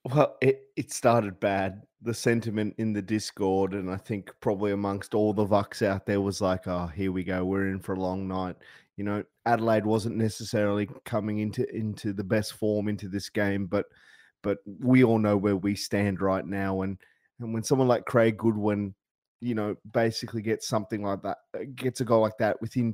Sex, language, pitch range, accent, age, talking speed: male, English, 100-130 Hz, Australian, 20-39, 200 wpm